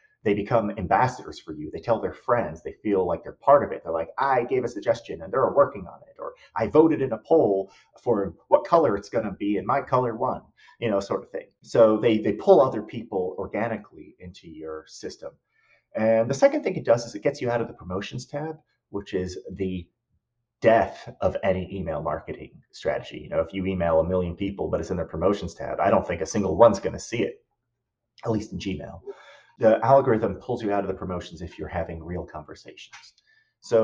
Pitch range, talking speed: 95-125 Hz, 220 wpm